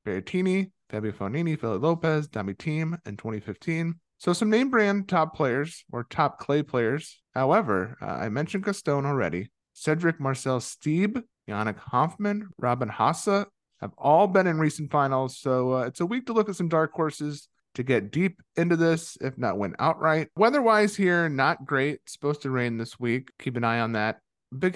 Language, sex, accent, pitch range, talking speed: English, male, American, 120-165 Hz, 175 wpm